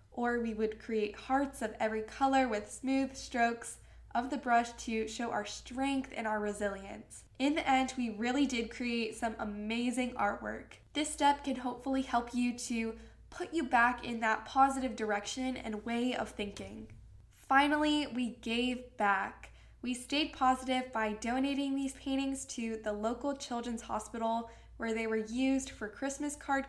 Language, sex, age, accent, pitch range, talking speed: English, female, 10-29, American, 225-265 Hz, 160 wpm